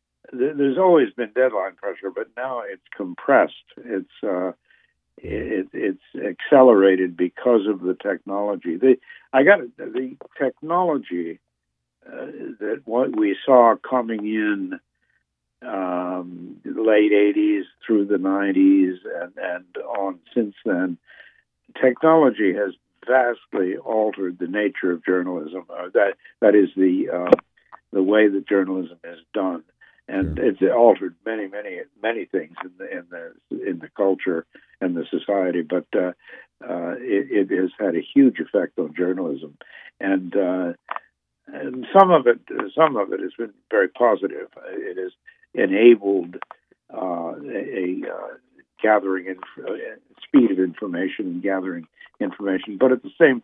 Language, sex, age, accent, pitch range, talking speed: English, male, 60-79, American, 95-135 Hz, 135 wpm